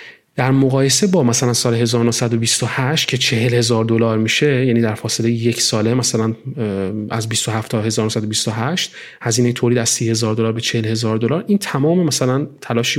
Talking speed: 150 wpm